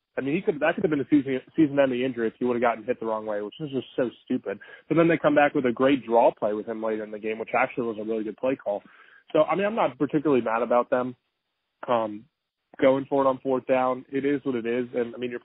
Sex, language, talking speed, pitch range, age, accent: male, English, 290 wpm, 115-130 Hz, 20-39, American